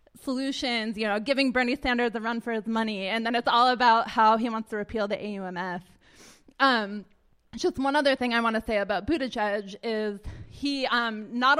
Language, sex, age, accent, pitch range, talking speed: English, female, 20-39, American, 205-240 Hz, 200 wpm